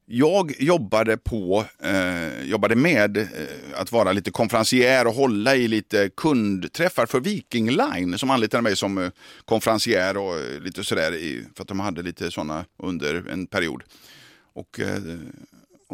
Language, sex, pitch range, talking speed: Swedish, male, 95-130 Hz, 155 wpm